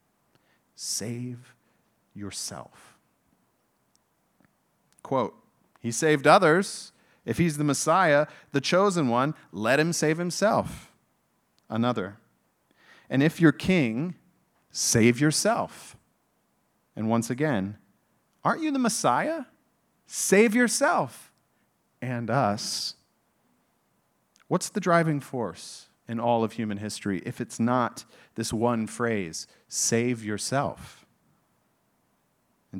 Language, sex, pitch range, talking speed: English, male, 110-150 Hz, 95 wpm